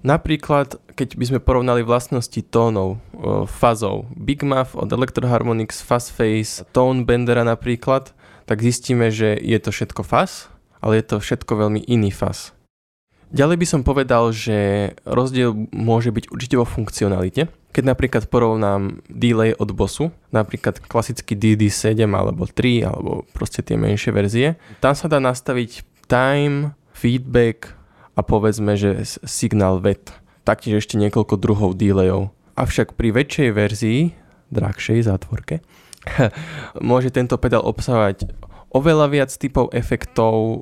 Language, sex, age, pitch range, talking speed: Slovak, male, 20-39, 105-125 Hz, 130 wpm